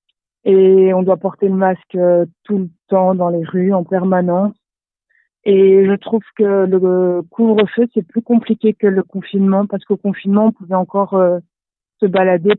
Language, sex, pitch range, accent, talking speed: French, female, 180-205 Hz, French, 165 wpm